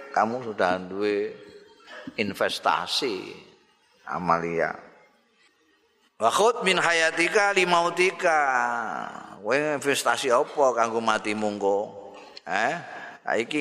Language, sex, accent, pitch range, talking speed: Indonesian, male, native, 105-150 Hz, 90 wpm